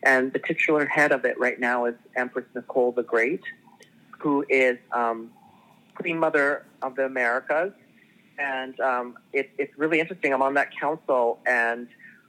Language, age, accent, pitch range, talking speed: English, 40-59, American, 125-155 Hz, 150 wpm